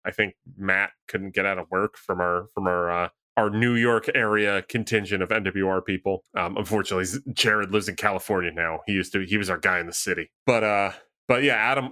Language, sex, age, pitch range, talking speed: English, male, 30-49, 100-135 Hz, 215 wpm